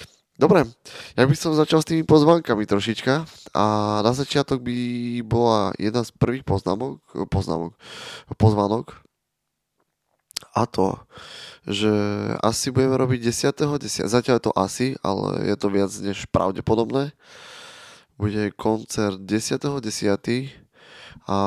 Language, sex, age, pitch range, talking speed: Slovak, male, 20-39, 105-130 Hz, 120 wpm